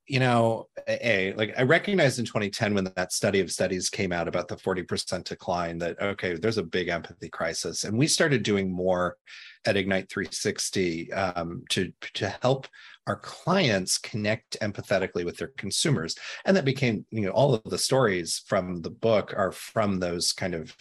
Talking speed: 180 wpm